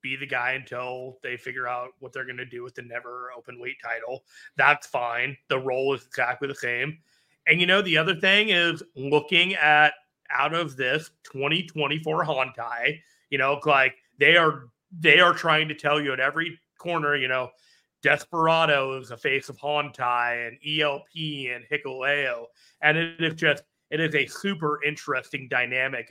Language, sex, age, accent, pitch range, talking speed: English, male, 30-49, American, 130-155 Hz, 175 wpm